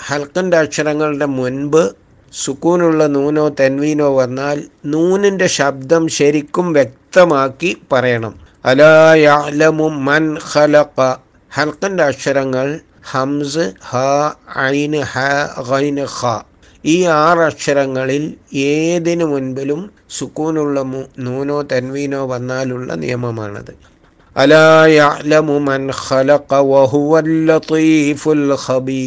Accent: native